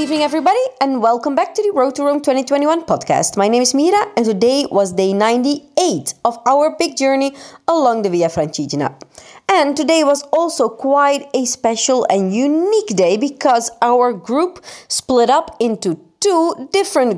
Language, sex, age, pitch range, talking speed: Italian, female, 30-49, 200-285 Hz, 170 wpm